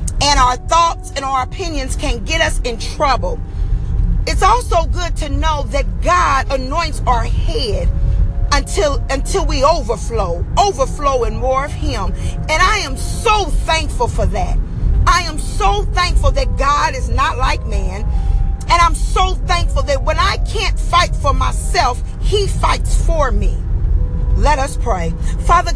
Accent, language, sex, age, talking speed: American, English, female, 40-59, 150 wpm